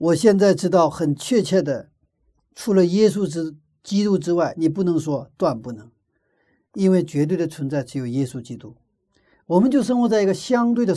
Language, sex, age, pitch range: Chinese, male, 50-69, 145-225 Hz